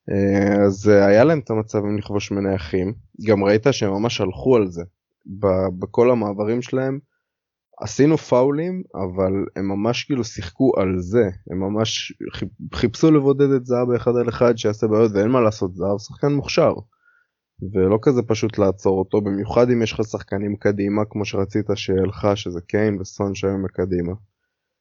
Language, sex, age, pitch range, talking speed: Hebrew, male, 20-39, 100-120 Hz, 130 wpm